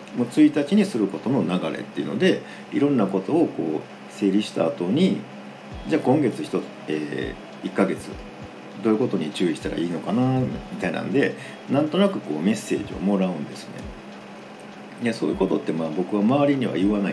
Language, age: Japanese, 50-69